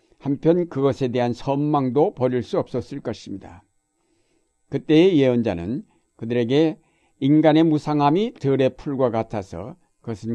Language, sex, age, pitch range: Korean, male, 60-79, 120-150 Hz